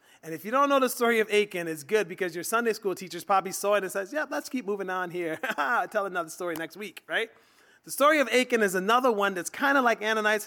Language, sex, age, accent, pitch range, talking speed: English, male, 30-49, American, 195-255 Hz, 260 wpm